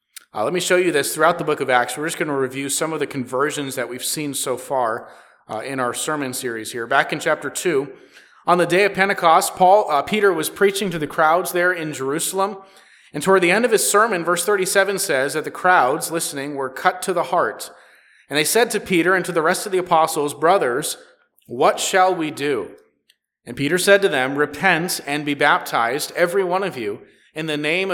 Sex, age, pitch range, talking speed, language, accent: male, 30-49, 145-190 Hz, 220 wpm, English, American